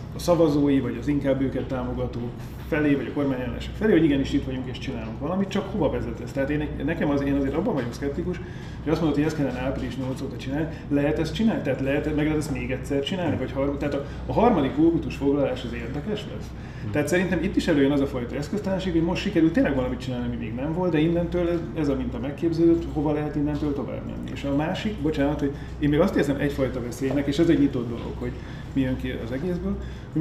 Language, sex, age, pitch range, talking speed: Hungarian, male, 30-49, 125-150 Hz, 230 wpm